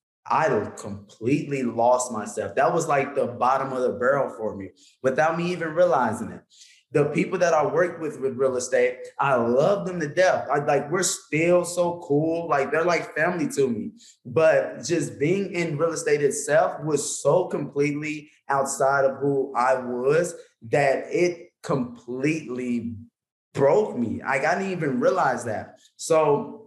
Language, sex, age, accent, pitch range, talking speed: English, male, 20-39, American, 130-170 Hz, 160 wpm